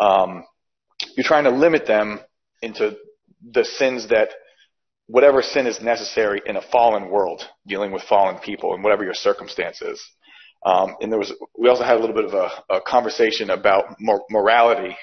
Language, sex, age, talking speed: English, male, 40-59, 170 wpm